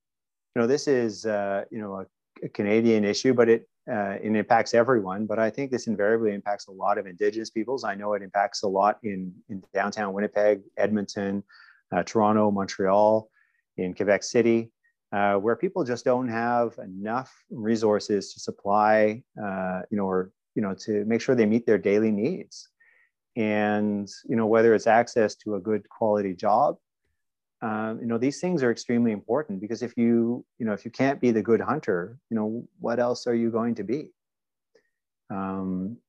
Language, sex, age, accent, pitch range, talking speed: English, male, 30-49, American, 100-115 Hz, 185 wpm